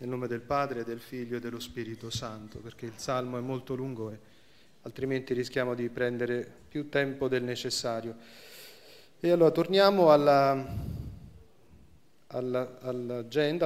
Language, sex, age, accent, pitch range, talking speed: Italian, male, 30-49, native, 125-155 Hz, 135 wpm